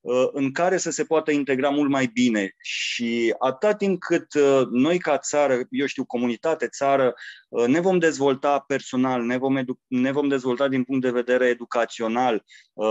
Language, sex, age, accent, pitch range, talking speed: Romanian, male, 20-39, native, 130-175 Hz, 165 wpm